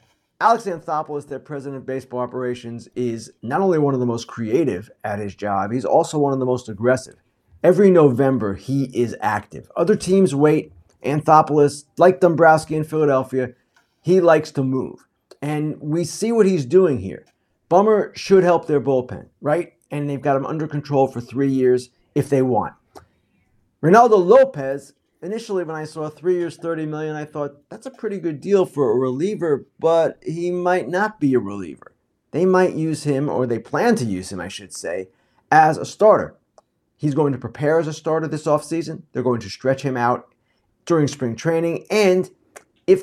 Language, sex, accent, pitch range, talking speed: English, male, American, 130-170 Hz, 185 wpm